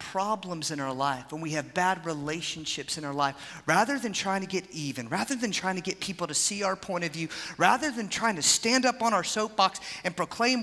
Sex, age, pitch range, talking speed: male, 40-59, 160-220 Hz, 230 wpm